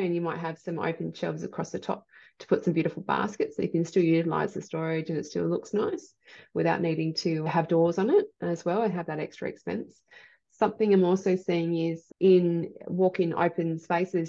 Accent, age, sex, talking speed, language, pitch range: Australian, 20-39, female, 210 wpm, English, 155-175 Hz